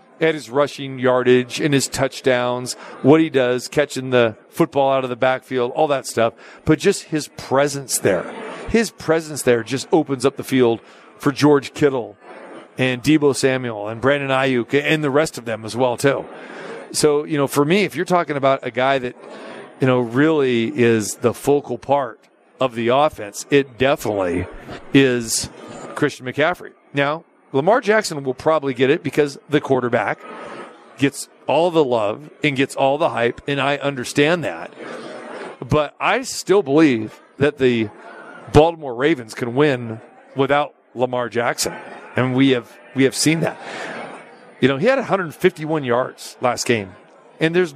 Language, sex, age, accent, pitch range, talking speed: English, male, 40-59, American, 125-150 Hz, 165 wpm